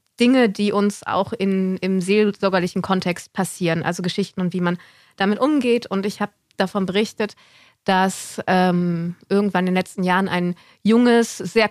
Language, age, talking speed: German, 20-39, 160 wpm